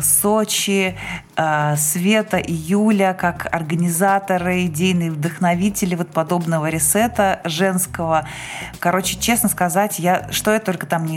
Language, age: Russian, 20-39